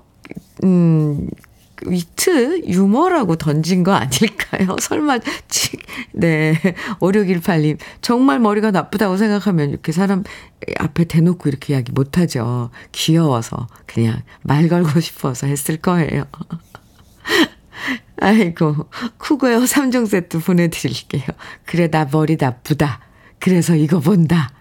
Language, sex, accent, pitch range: Korean, female, native, 150-215 Hz